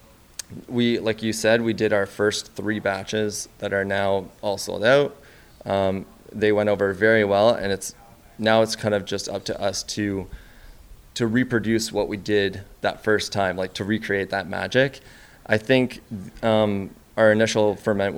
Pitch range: 100-110 Hz